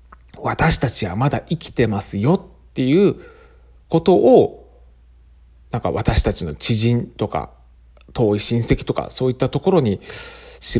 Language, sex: Japanese, male